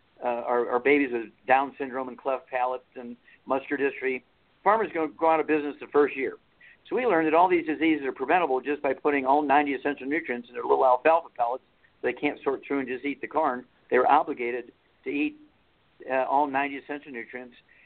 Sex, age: male, 50-69